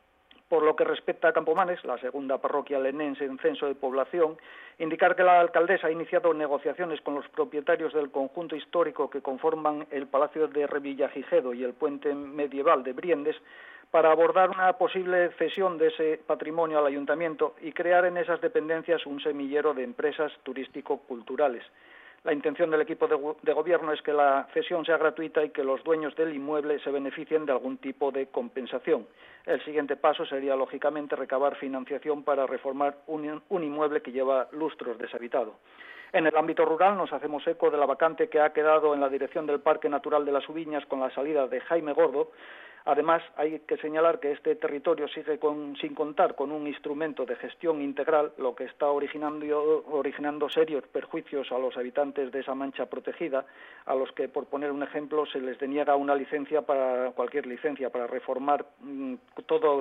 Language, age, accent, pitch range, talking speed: Spanish, 40-59, Spanish, 140-160 Hz, 175 wpm